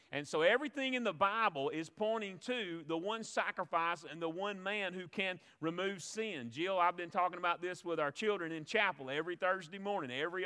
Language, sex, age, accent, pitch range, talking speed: English, male, 40-59, American, 155-200 Hz, 200 wpm